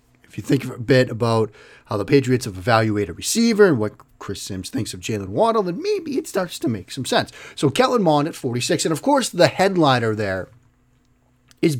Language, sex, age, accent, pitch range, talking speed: English, male, 30-49, American, 115-160 Hz, 210 wpm